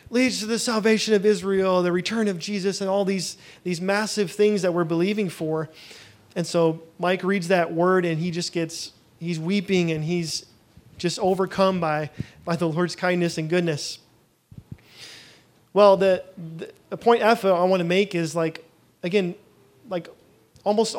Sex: male